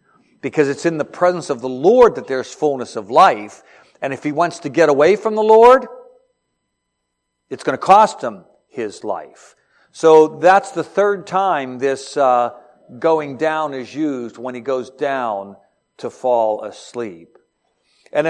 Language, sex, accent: English, male, American